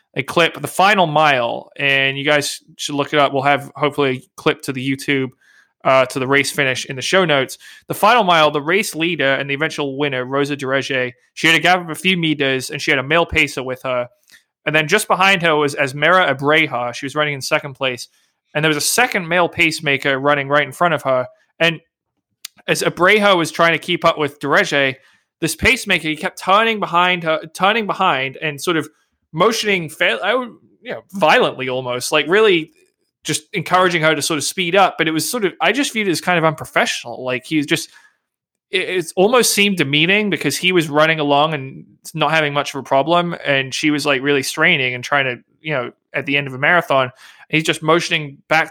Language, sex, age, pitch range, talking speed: English, male, 20-39, 140-175 Hz, 220 wpm